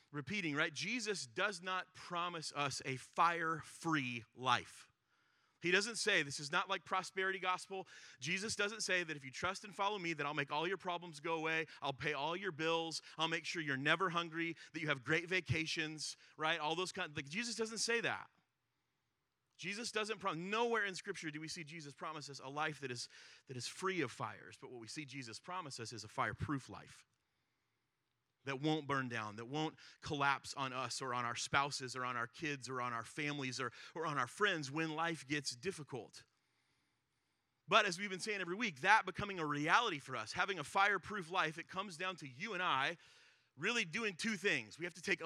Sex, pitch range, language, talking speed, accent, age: male, 135-185 Hz, English, 205 wpm, American, 30-49